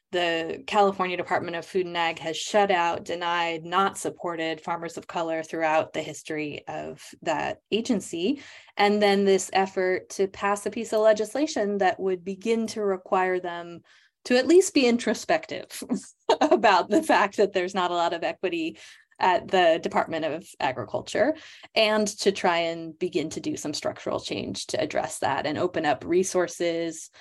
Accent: American